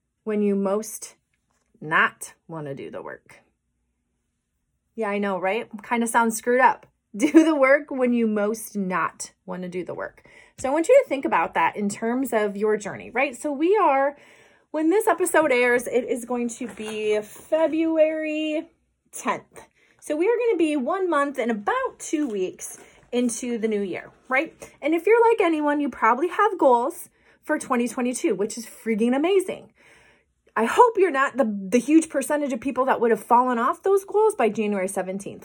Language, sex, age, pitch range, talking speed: English, female, 30-49, 220-320 Hz, 180 wpm